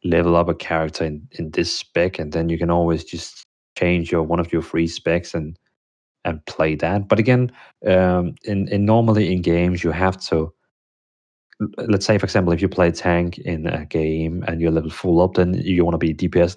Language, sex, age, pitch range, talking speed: English, male, 30-49, 85-105 Hz, 210 wpm